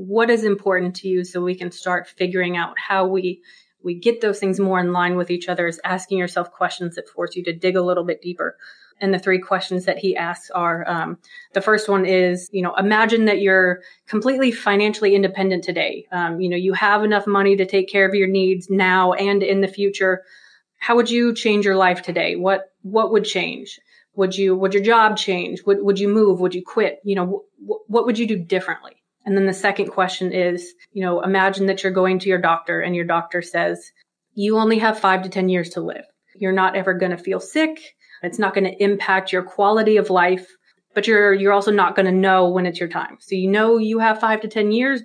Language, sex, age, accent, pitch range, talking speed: English, female, 30-49, American, 180-205 Hz, 230 wpm